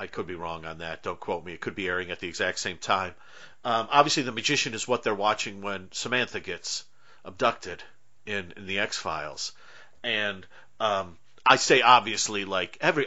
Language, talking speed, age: English, 195 wpm, 50-69